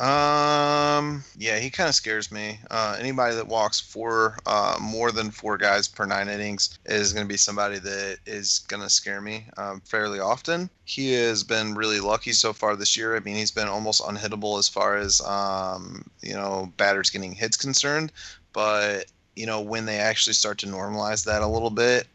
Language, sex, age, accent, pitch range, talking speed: English, male, 20-39, American, 100-110 Hz, 195 wpm